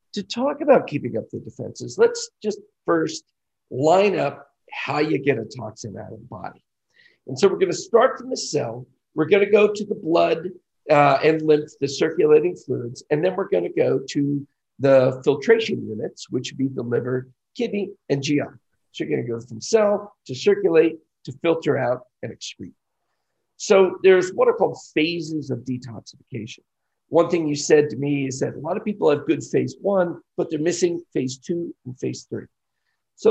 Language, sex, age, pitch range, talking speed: English, male, 50-69, 145-225 Hz, 185 wpm